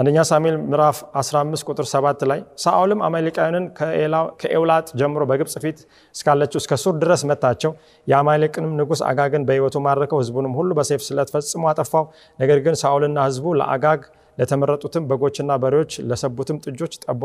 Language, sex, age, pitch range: Amharic, male, 30-49, 135-170 Hz